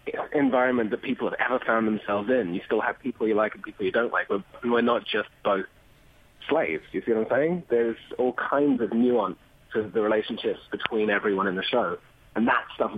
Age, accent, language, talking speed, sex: 30-49, British, English, 215 wpm, male